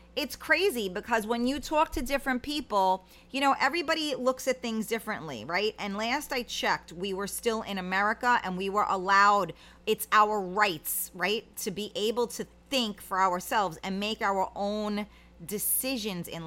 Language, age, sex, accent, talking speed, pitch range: English, 30-49, female, American, 170 wpm, 185-245 Hz